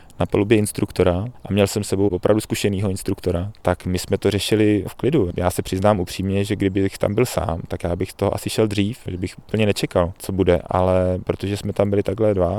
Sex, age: male, 20-39